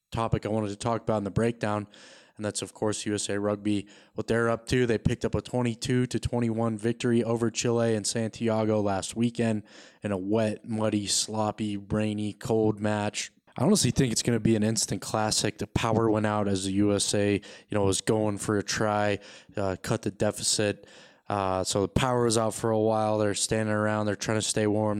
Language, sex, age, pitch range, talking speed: English, male, 20-39, 100-115 Hz, 205 wpm